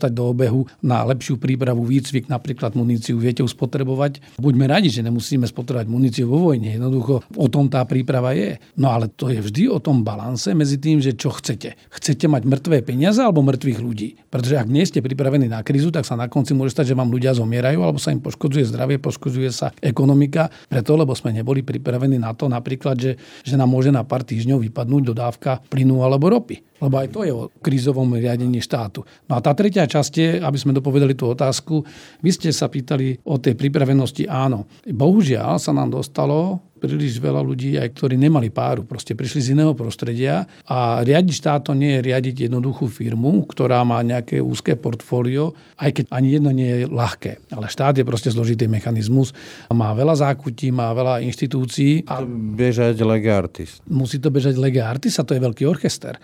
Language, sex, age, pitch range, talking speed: Slovak, male, 40-59, 125-145 Hz, 190 wpm